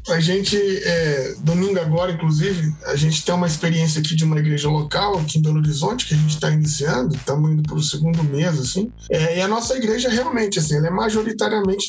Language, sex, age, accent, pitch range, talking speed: Portuguese, male, 20-39, Brazilian, 155-200 Hz, 210 wpm